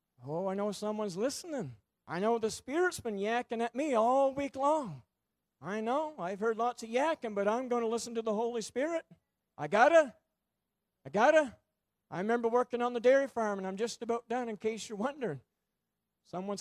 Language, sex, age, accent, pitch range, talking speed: English, male, 50-69, American, 200-250 Hz, 200 wpm